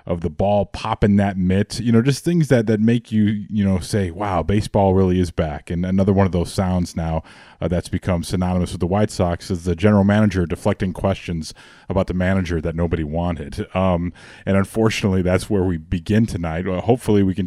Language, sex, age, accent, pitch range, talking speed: English, male, 30-49, American, 90-110 Hz, 210 wpm